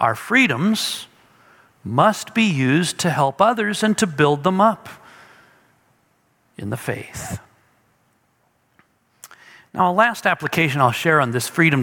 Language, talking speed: English, 125 wpm